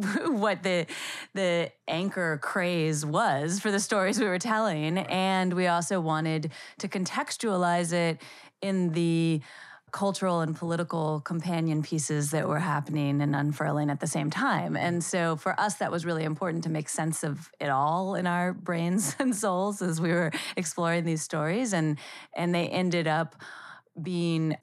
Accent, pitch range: American, 155-180 Hz